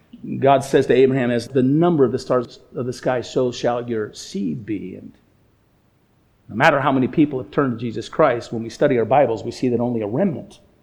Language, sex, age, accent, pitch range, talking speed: English, male, 50-69, American, 125-155 Hz, 220 wpm